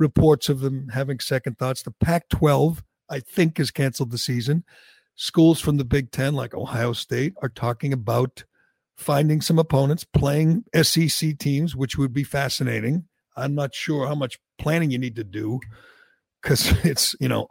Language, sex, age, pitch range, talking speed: English, male, 60-79, 125-145 Hz, 170 wpm